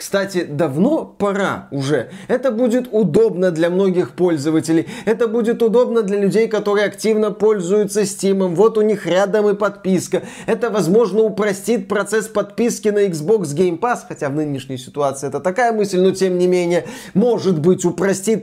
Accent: native